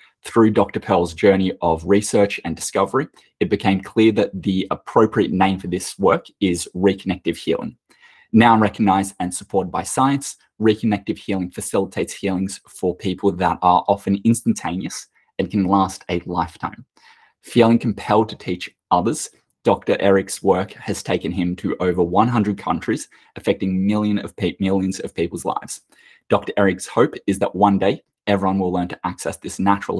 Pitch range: 95-105 Hz